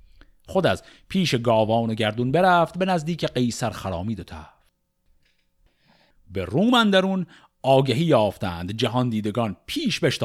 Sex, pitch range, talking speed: male, 110-145 Hz, 125 wpm